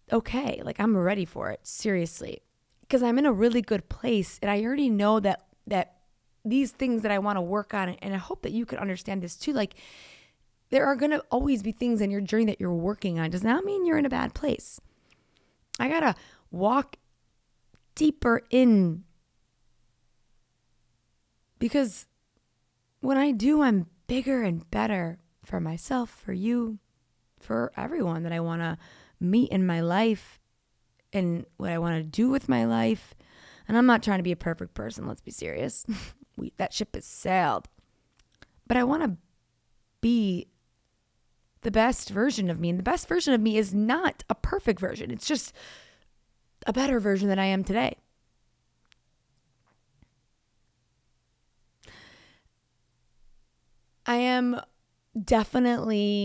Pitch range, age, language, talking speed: 165-240 Hz, 20-39, English, 155 wpm